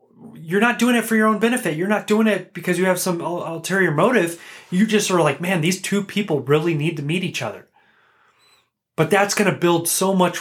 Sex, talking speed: male, 225 wpm